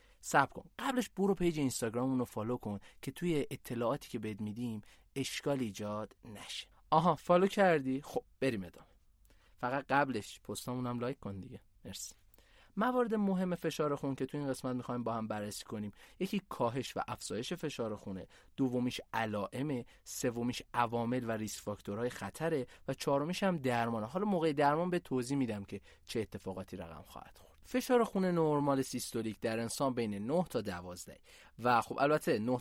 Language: Persian